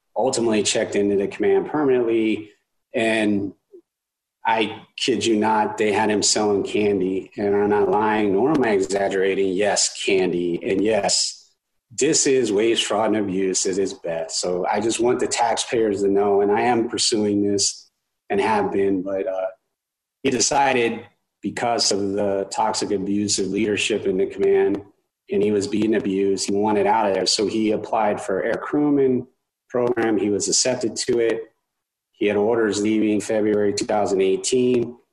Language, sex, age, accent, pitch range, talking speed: English, male, 30-49, American, 100-120 Hz, 160 wpm